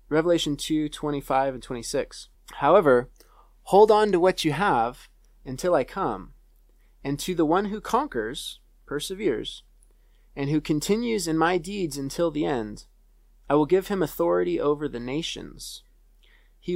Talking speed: 145 wpm